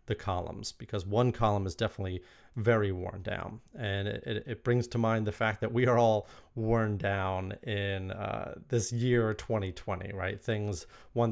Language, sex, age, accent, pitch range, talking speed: English, male, 30-49, American, 100-120 Hz, 175 wpm